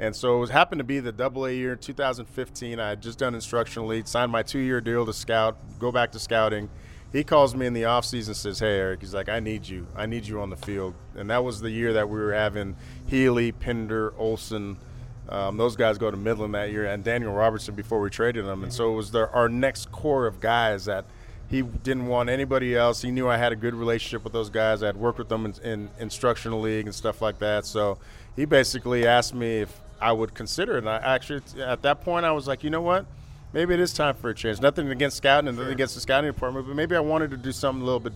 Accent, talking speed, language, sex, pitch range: American, 255 wpm, English, male, 110-130 Hz